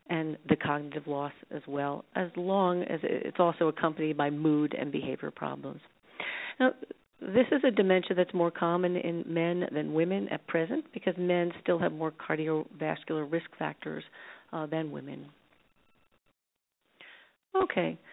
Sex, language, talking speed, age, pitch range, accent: female, English, 140 wpm, 40-59, 165-210 Hz, American